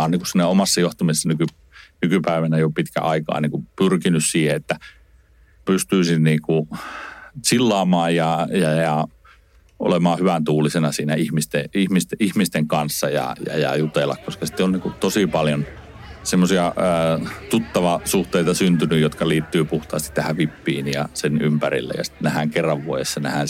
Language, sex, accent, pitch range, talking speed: Finnish, male, native, 75-85 Hz, 130 wpm